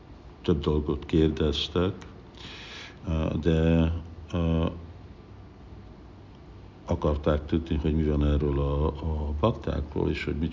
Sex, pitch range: male, 75-85 Hz